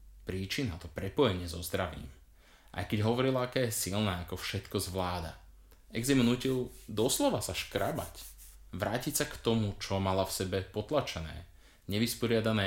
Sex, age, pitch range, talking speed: male, 20-39, 85-110 Hz, 135 wpm